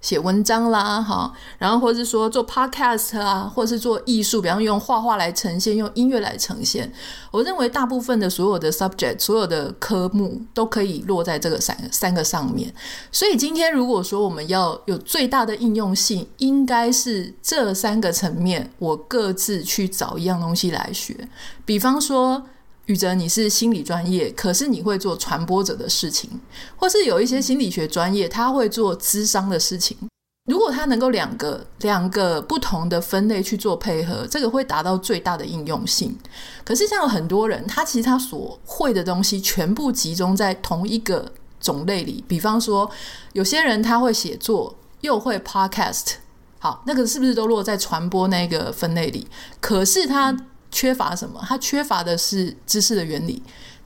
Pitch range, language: 190-245 Hz, Chinese